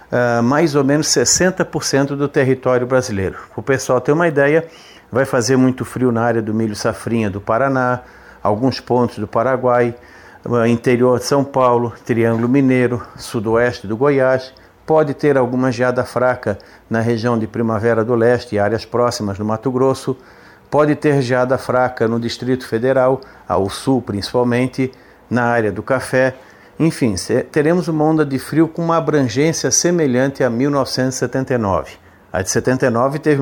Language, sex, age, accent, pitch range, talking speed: Portuguese, male, 50-69, Brazilian, 115-140 Hz, 150 wpm